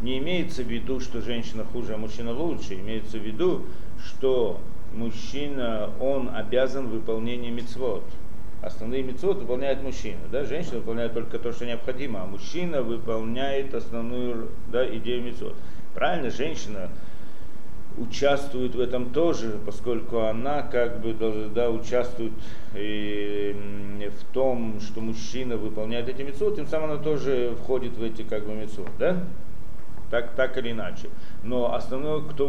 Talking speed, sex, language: 140 wpm, male, Russian